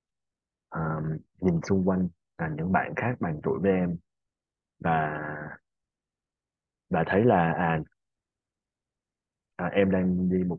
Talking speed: 125 wpm